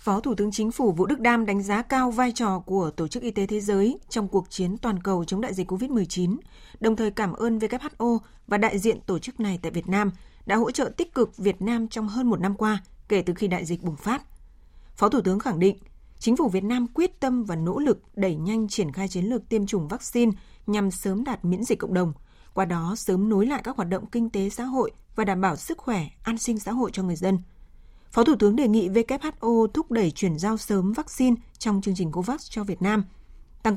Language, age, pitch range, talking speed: Vietnamese, 20-39, 195-230 Hz, 240 wpm